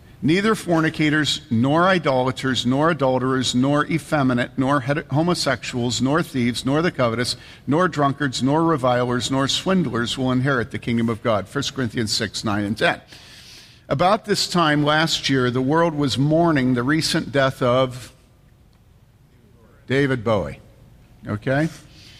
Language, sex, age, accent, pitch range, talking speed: English, male, 50-69, American, 125-160 Hz, 130 wpm